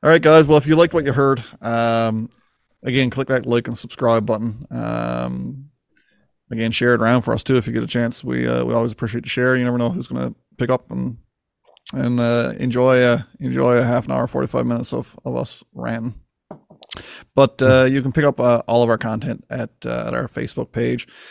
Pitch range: 110-130 Hz